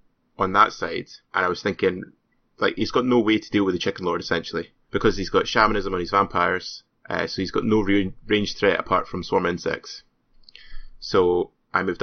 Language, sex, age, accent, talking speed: English, male, 20-39, British, 200 wpm